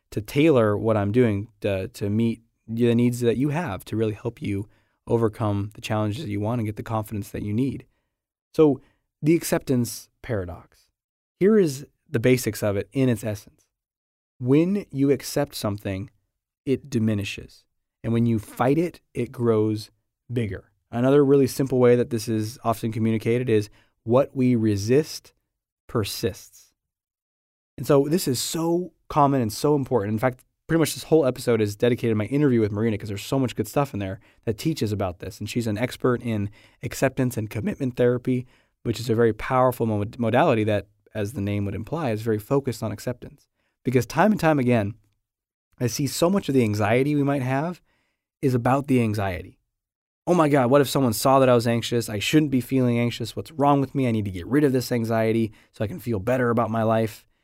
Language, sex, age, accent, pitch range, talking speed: English, male, 20-39, American, 105-130 Hz, 195 wpm